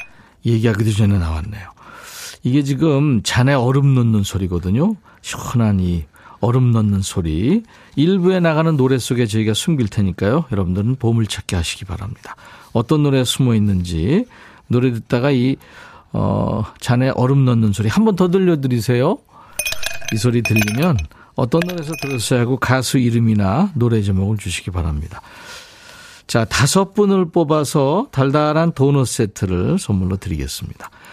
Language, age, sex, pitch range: Korean, 40-59, male, 105-155 Hz